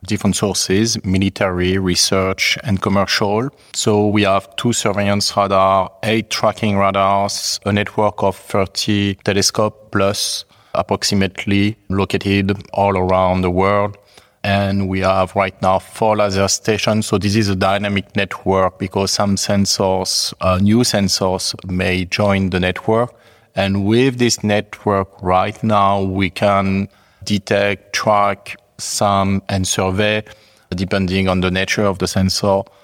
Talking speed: 130 wpm